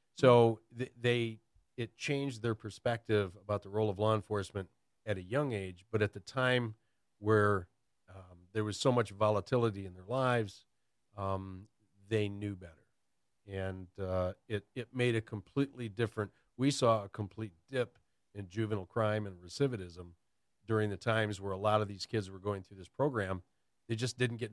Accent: American